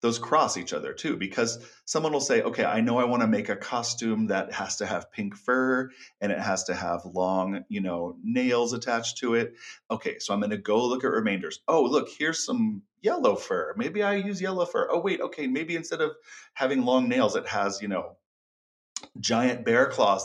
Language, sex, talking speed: English, male, 205 wpm